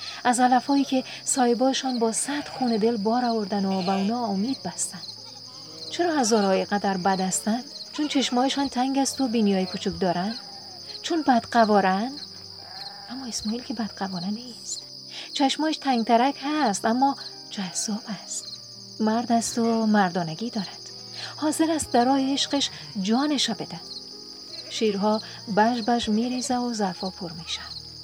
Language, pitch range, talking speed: Persian, 195-245 Hz, 135 wpm